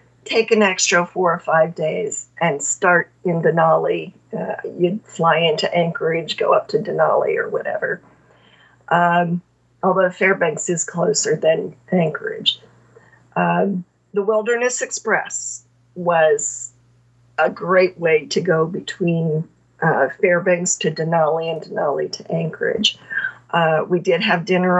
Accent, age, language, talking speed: American, 50-69, English, 130 wpm